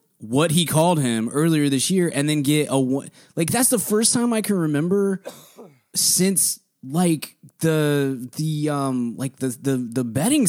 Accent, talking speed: American, 170 wpm